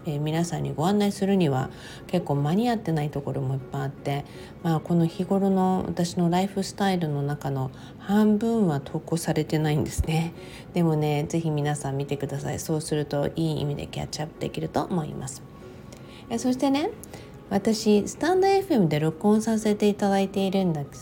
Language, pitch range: Japanese, 145-190 Hz